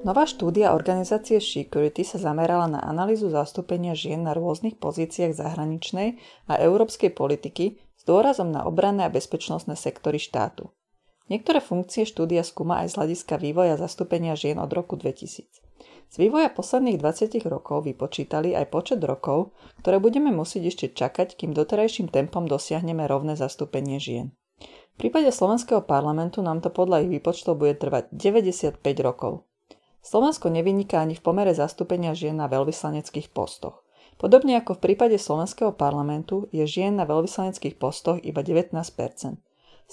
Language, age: Slovak, 30-49